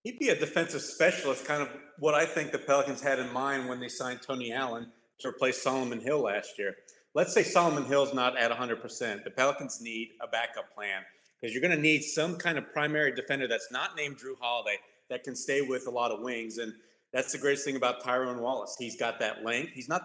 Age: 30-49